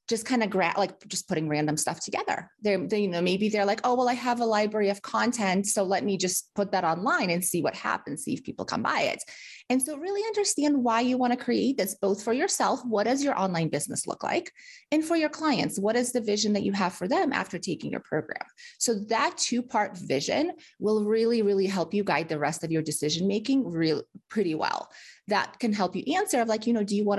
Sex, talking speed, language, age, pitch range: female, 245 wpm, English, 30-49, 190-250 Hz